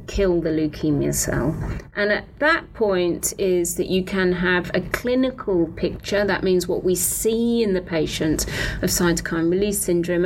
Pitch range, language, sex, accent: 170-215 Hz, English, female, British